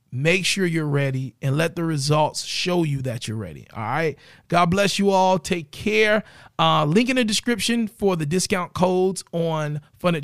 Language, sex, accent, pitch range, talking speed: English, male, American, 150-185 Hz, 190 wpm